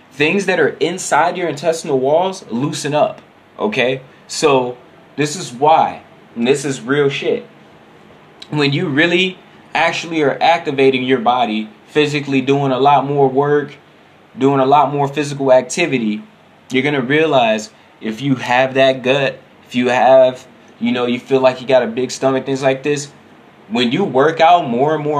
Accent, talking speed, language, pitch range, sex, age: American, 170 wpm, English, 125-155 Hz, male, 20-39